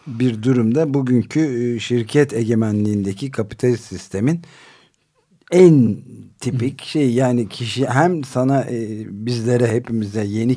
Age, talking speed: 50-69, 100 wpm